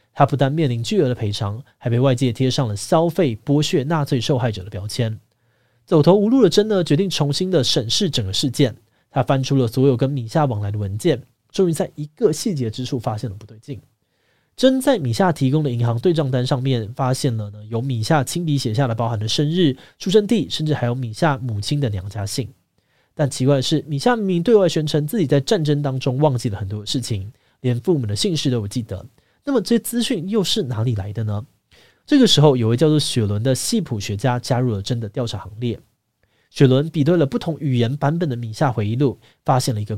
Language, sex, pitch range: Chinese, male, 115-155 Hz